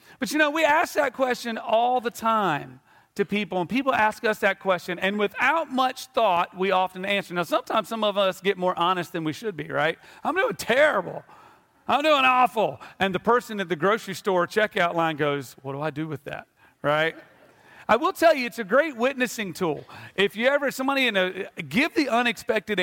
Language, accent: English, American